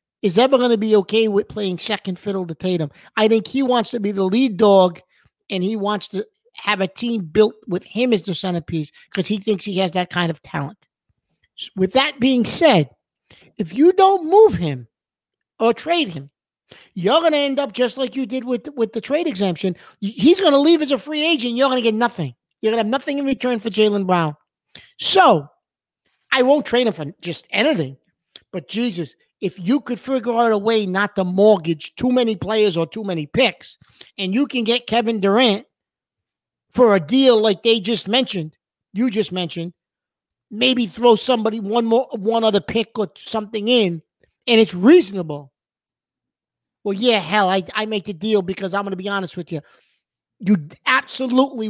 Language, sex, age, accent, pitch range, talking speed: English, male, 50-69, American, 185-245 Hz, 195 wpm